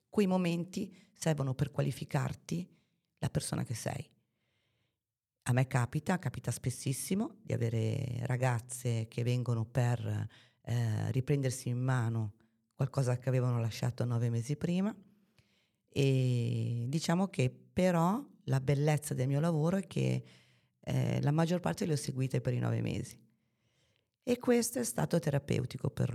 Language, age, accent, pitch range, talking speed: Italian, 30-49, native, 120-150 Hz, 135 wpm